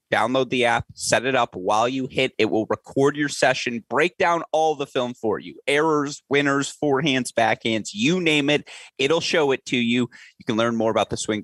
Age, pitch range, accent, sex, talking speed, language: 30-49, 105-140 Hz, American, male, 210 wpm, English